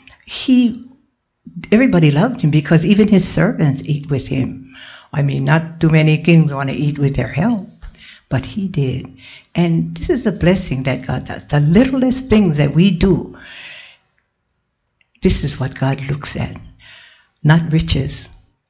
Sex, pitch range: female, 140-180 Hz